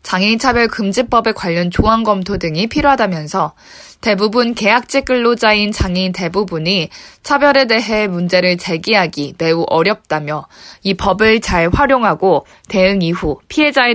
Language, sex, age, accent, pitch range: Korean, female, 20-39, native, 180-255 Hz